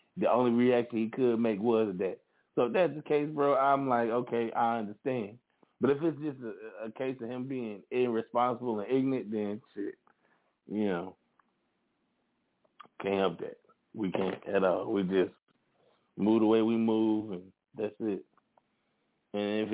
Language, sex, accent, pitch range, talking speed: English, male, American, 95-115 Hz, 165 wpm